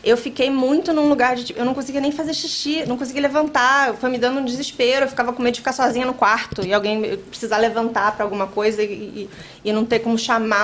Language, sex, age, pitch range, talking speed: Portuguese, female, 20-39, 205-280 Hz, 235 wpm